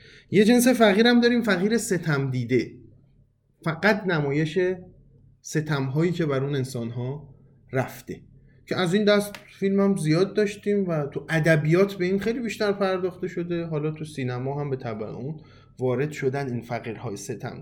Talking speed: 155 wpm